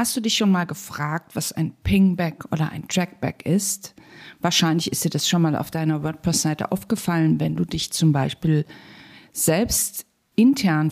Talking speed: 165 wpm